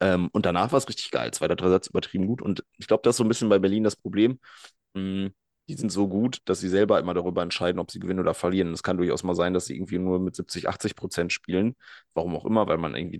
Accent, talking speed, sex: German, 265 wpm, male